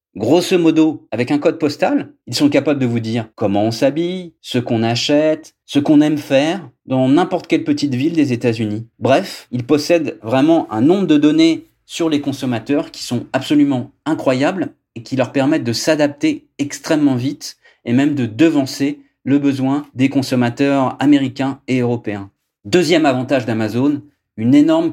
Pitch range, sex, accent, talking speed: 120-155 Hz, male, French, 165 wpm